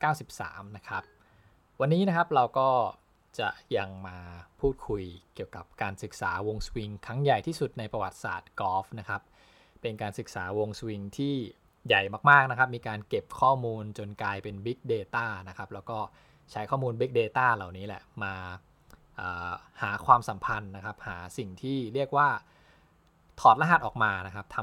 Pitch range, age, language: 95-125 Hz, 20-39, English